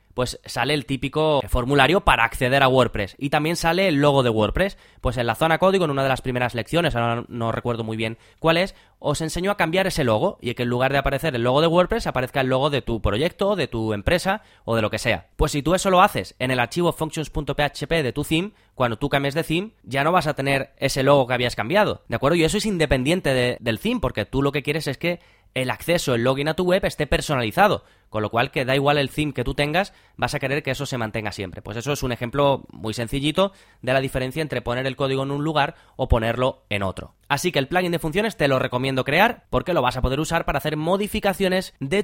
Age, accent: 20-39, Spanish